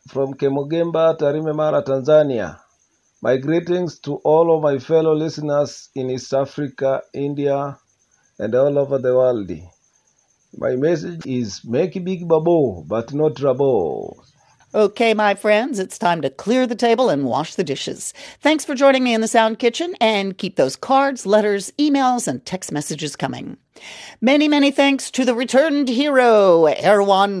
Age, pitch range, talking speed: 40-59, 155-245 Hz, 150 wpm